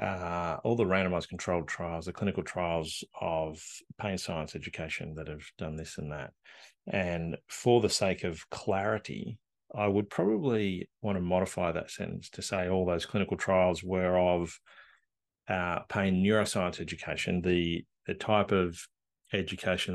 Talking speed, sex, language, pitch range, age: 150 wpm, male, English, 85-95 Hz, 30-49